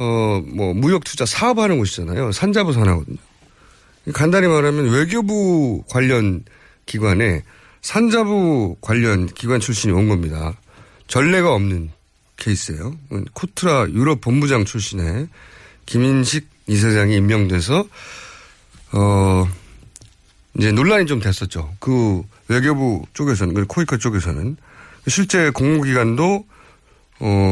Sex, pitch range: male, 100-170 Hz